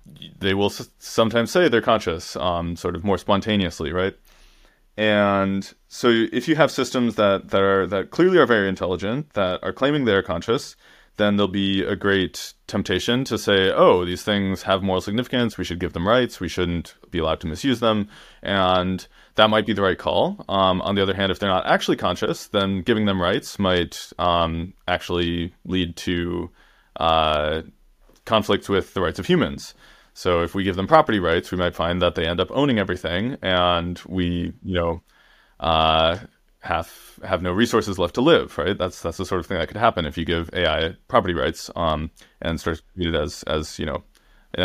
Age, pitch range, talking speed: 30-49, 85-100 Hz, 195 wpm